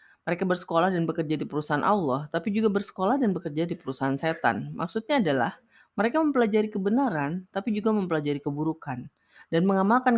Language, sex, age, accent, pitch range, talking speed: Indonesian, female, 30-49, native, 140-205 Hz, 155 wpm